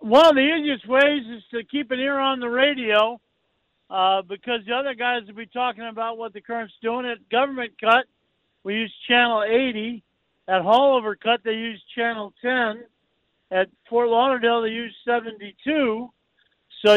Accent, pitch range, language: American, 205-245 Hz, English